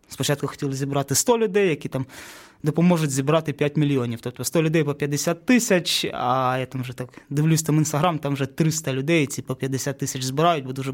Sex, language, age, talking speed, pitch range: male, Ukrainian, 20-39, 195 wpm, 130-150 Hz